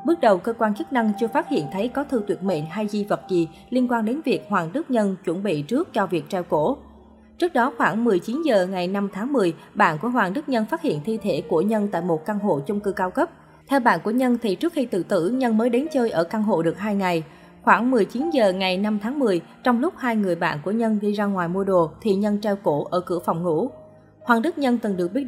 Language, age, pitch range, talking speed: Vietnamese, 20-39, 185-250 Hz, 265 wpm